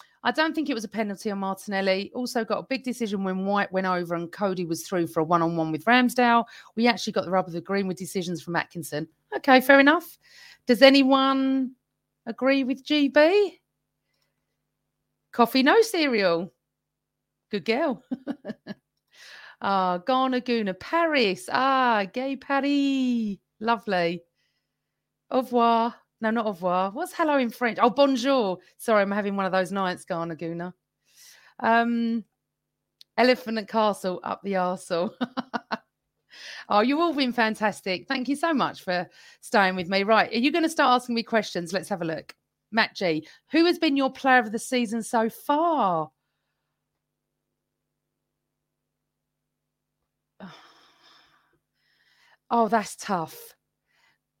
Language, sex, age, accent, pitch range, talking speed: English, female, 40-59, British, 190-265 Hz, 140 wpm